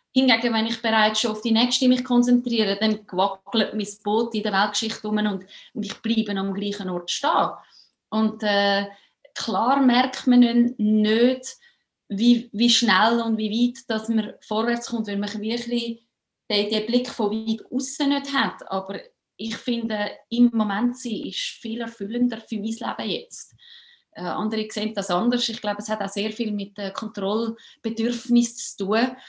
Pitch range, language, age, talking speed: 215-250 Hz, English, 30-49, 170 wpm